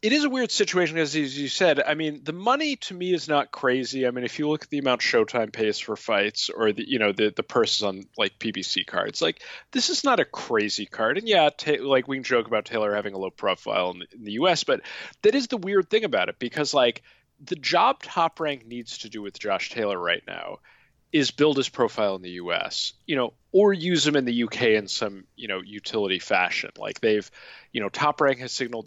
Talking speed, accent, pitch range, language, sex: 240 wpm, American, 105-155 Hz, English, male